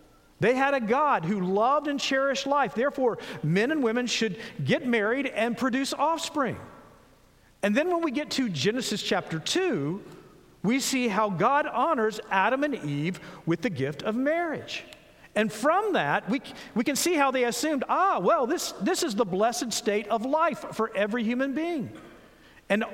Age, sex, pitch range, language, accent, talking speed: 50-69, male, 205-285 Hz, English, American, 175 wpm